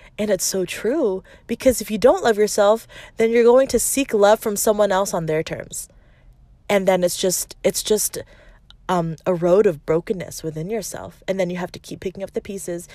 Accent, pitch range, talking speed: American, 170-210 Hz, 210 wpm